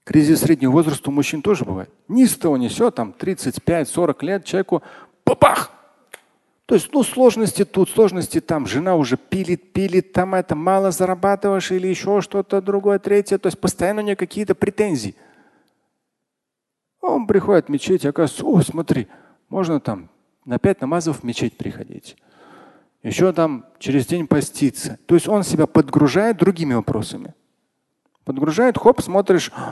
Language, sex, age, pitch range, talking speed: Russian, male, 40-59, 135-190 Hz, 145 wpm